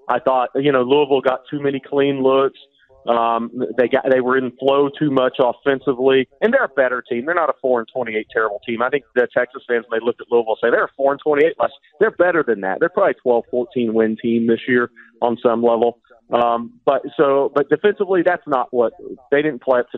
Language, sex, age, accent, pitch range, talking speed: English, male, 40-59, American, 120-140 Hz, 230 wpm